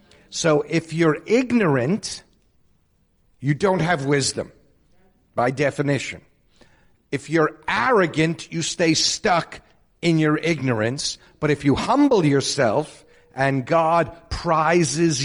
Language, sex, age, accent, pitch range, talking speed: English, male, 60-79, American, 135-165 Hz, 105 wpm